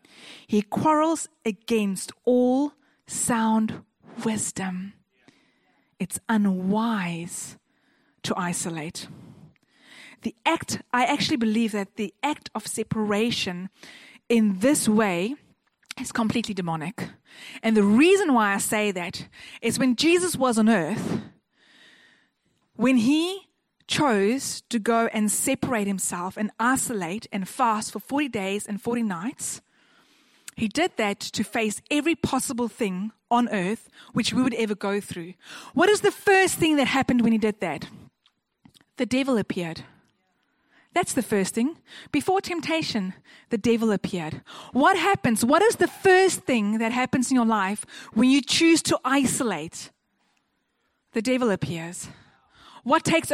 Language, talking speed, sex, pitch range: English, 135 wpm, female, 205-275 Hz